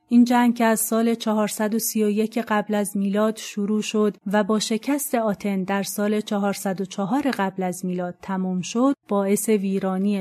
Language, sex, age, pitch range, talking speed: Persian, female, 30-49, 195-230 Hz, 145 wpm